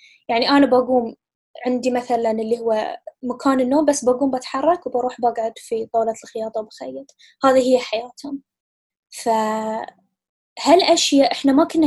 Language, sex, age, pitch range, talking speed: Arabic, female, 10-29, 230-280 Hz, 125 wpm